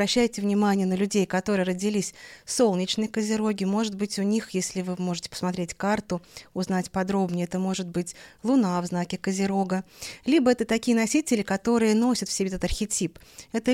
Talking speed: 160 wpm